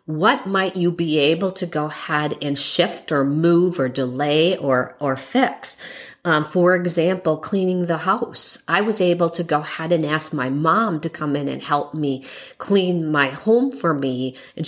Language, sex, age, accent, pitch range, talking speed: English, female, 40-59, American, 145-180 Hz, 185 wpm